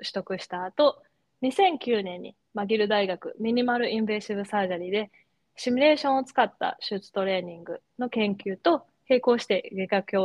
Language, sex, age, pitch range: Japanese, female, 20-39, 195-250 Hz